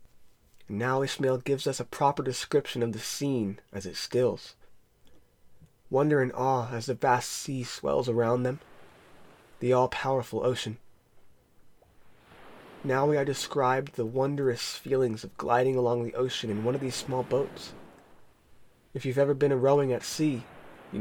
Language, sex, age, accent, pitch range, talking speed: English, male, 20-39, American, 120-135 Hz, 150 wpm